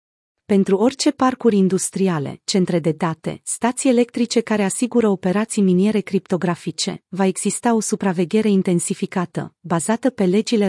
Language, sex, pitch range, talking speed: Romanian, female, 180-220 Hz, 125 wpm